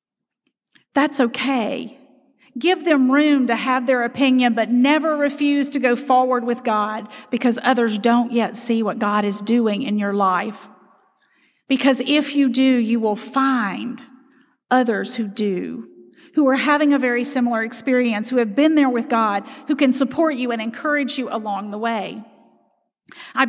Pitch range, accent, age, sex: 225-275 Hz, American, 40-59, female